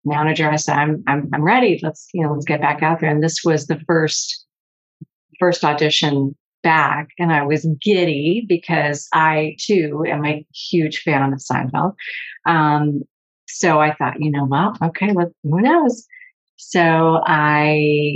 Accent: American